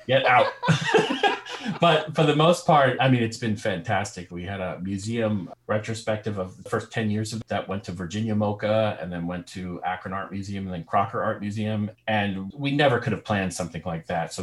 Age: 40-59